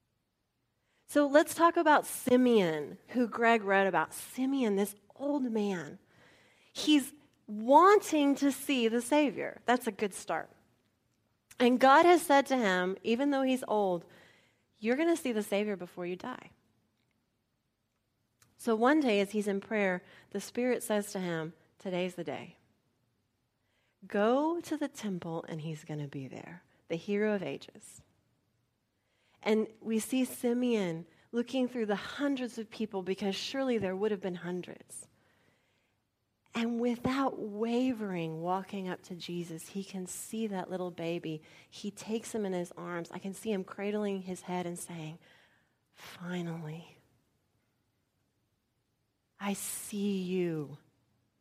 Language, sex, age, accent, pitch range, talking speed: English, female, 30-49, American, 160-235 Hz, 140 wpm